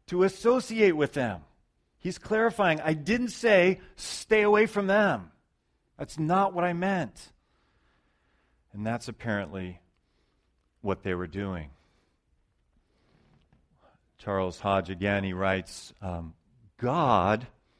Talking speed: 105 wpm